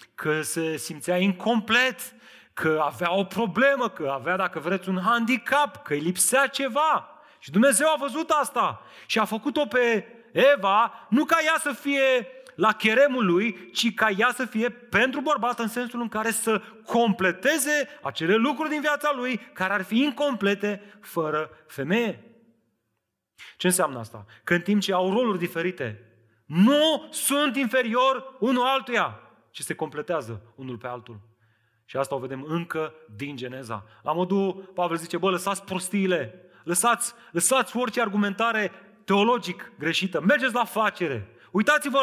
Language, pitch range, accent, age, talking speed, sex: Romanian, 180-255 Hz, native, 30-49, 150 wpm, male